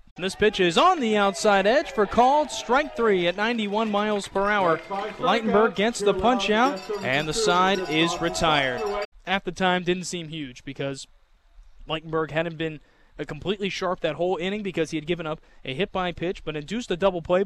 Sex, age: male, 20-39